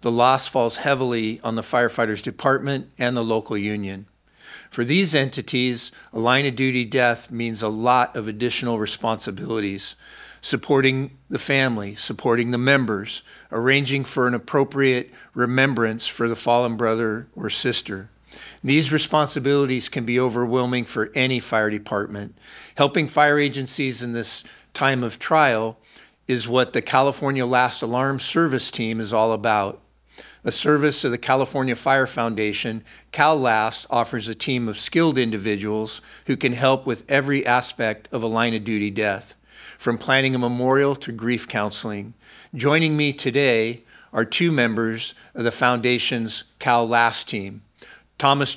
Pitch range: 115-135 Hz